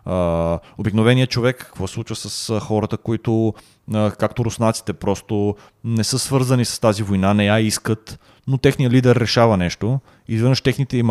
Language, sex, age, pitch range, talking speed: Bulgarian, male, 30-49, 95-120 Hz, 170 wpm